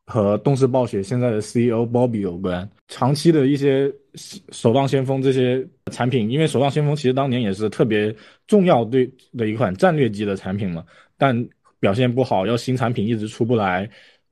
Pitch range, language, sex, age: 110-140 Hz, Chinese, male, 20-39